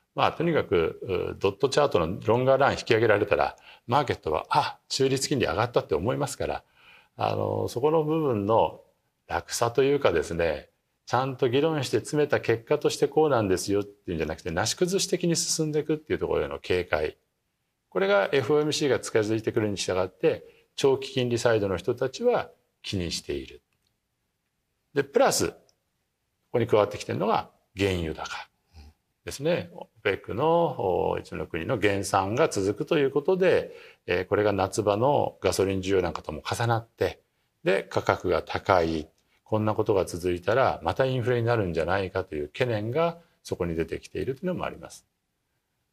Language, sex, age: Japanese, male, 50-69